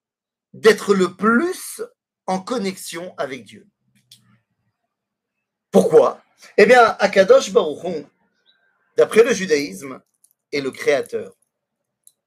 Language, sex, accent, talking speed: French, male, French, 90 wpm